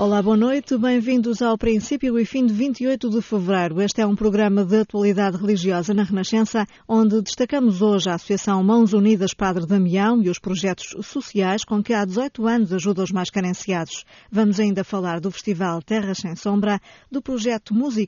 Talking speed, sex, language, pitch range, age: 180 wpm, female, Portuguese, 190-230 Hz, 20-39